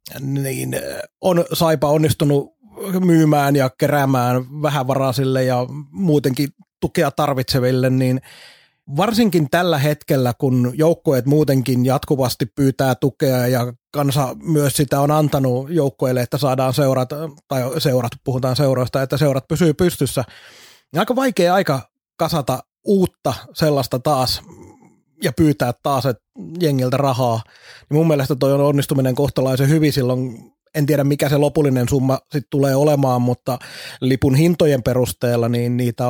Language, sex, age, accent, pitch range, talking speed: Finnish, male, 30-49, native, 130-155 Hz, 130 wpm